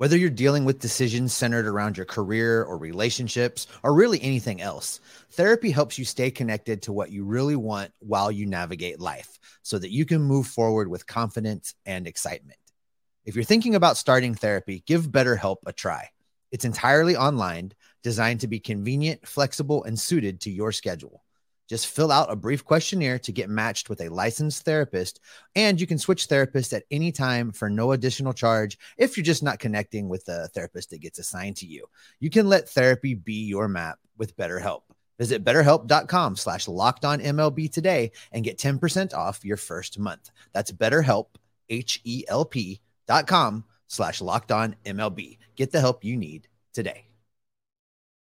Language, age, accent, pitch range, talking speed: English, 30-49, American, 105-140 Hz, 165 wpm